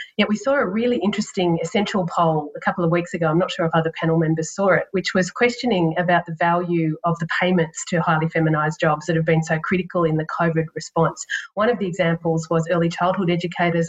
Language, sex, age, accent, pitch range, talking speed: English, female, 40-59, Australian, 165-190 Hz, 230 wpm